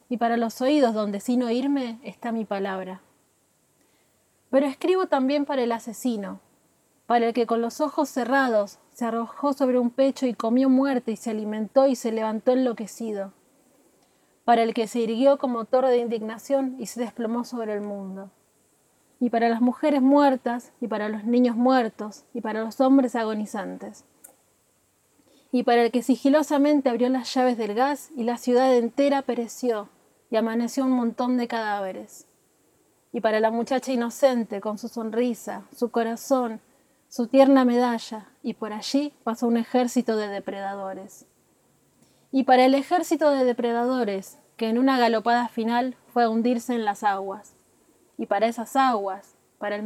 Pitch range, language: 220-265 Hz, Spanish